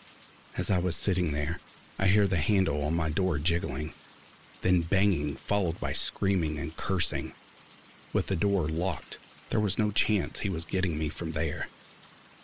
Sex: male